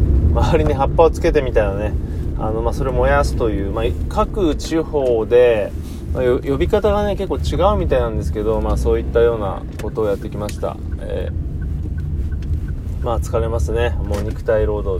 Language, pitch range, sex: Japanese, 95-155 Hz, male